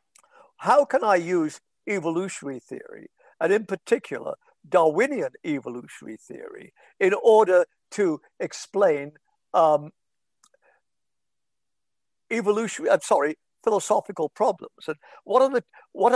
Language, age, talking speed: Persian, 60-79, 100 wpm